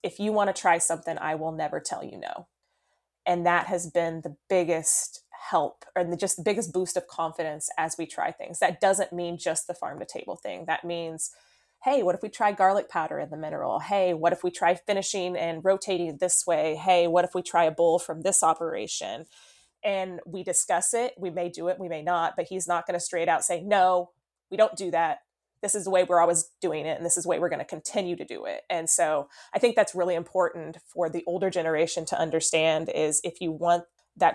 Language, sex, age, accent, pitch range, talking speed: English, female, 20-39, American, 165-185 Hz, 235 wpm